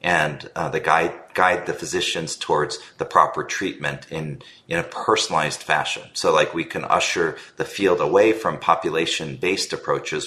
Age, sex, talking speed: 40-59, male, 160 wpm